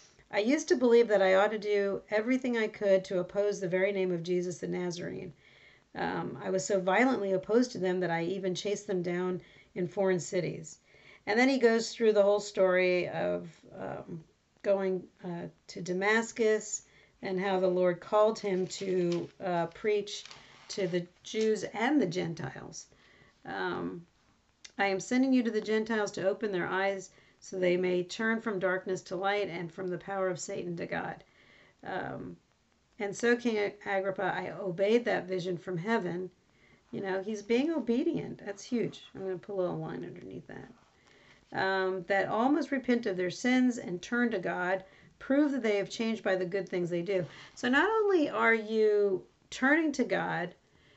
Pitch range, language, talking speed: 180-220 Hz, English, 180 wpm